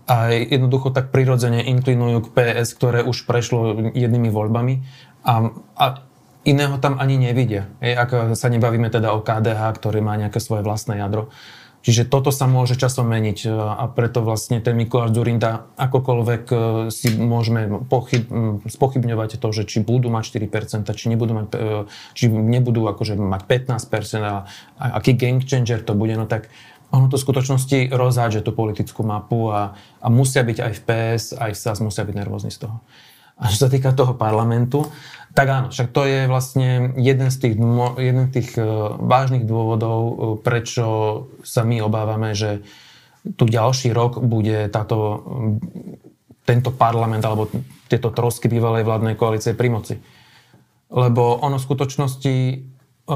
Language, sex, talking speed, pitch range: Slovak, male, 155 wpm, 110-130 Hz